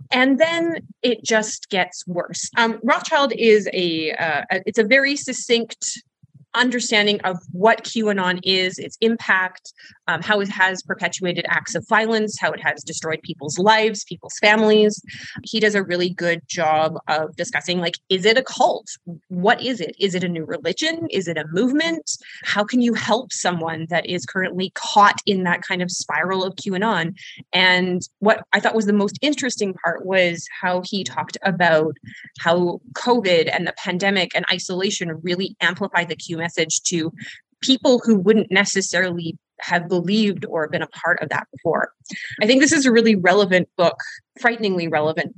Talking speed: 170 wpm